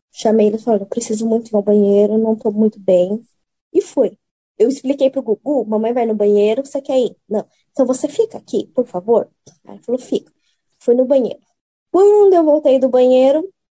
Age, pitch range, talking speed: 20-39, 220-305 Hz, 195 wpm